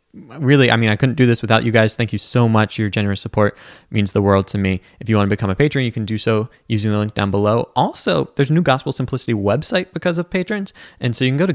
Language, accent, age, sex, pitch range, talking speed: English, American, 20-39, male, 105-135 Hz, 280 wpm